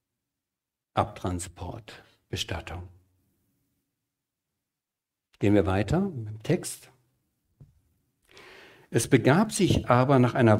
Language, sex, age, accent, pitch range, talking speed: German, male, 60-79, German, 110-150 Hz, 75 wpm